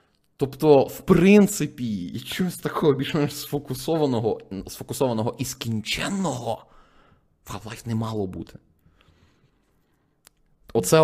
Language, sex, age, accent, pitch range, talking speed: Ukrainian, male, 20-39, native, 105-140 Hz, 85 wpm